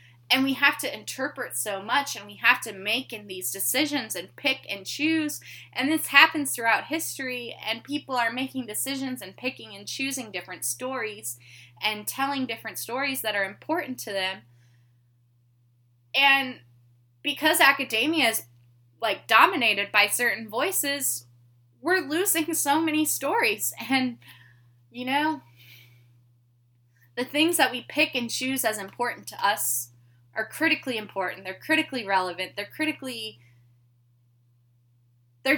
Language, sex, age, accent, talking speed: English, female, 10-29, American, 135 wpm